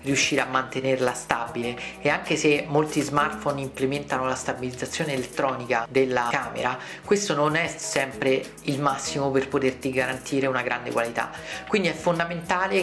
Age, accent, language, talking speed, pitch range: 40-59, native, Italian, 140 wpm, 130-155 Hz